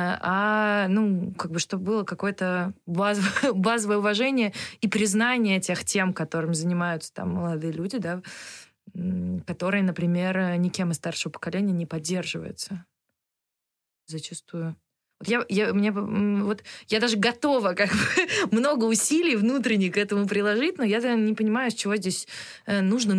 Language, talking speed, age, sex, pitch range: Russian, 130 wpm, 20-39, female, 175-210 Hz